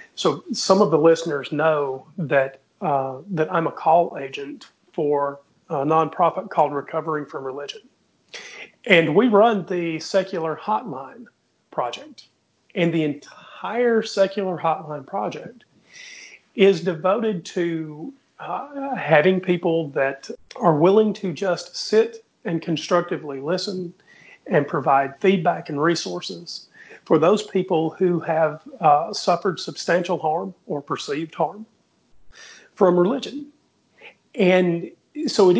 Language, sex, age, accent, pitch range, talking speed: English, male, 40-59, American, 160-210 Hz, 120 wpm